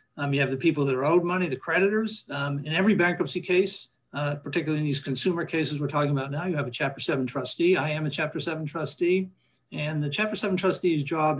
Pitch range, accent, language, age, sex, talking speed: 140-175 Hz, American, English, 60-79, male, 230 wpm